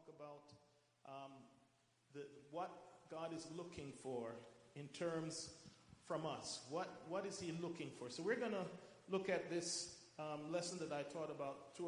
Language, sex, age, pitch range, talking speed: English, male, 40-59, 155-195 Hz, 155 wpm